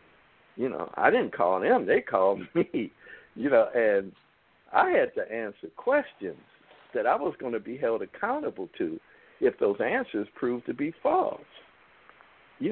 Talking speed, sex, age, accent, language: 160 wpm, male, 60-79, American, English